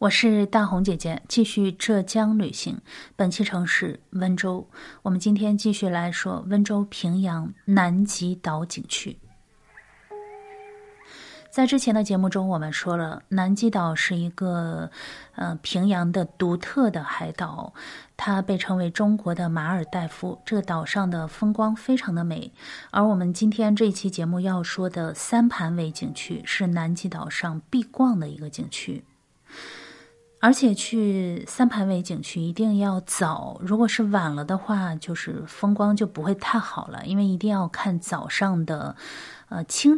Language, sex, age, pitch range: Chinese, female, 30-49, 170-210 Hz